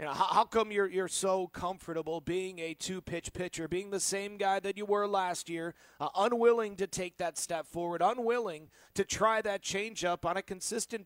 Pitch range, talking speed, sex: 170-230 Hz, 205 wpm, male